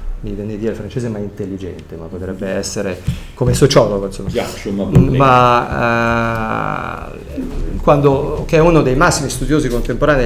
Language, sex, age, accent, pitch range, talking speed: Italian, male, 40-59, native, 100-135 Hz, 130 wpm